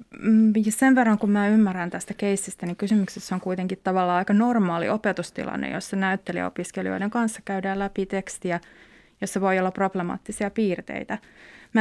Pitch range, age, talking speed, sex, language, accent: 175-200 Hz, 20-39, 140 wpm, female, Finnish, native